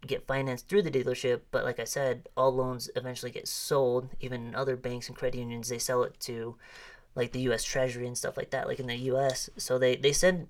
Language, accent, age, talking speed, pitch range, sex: English, American, 20-39, 230 wpm, 120-135 Hz, female